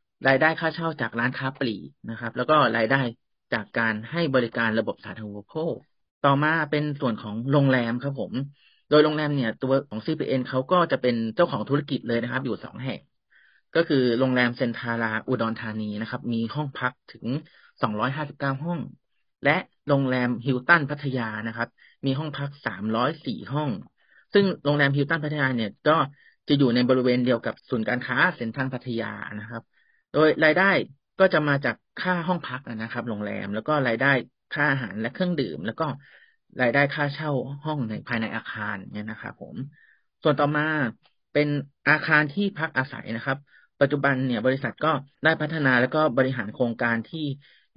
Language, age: Thai, 30-49